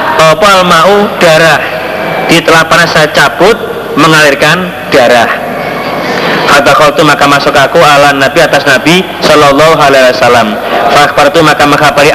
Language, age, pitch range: Indonesian, 30-49, 140-160 Hz